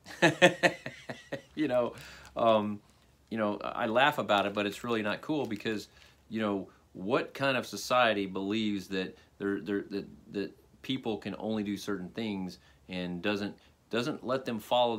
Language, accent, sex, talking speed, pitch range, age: English, American, male, 155 wpm, 90-115 Hz, 40-59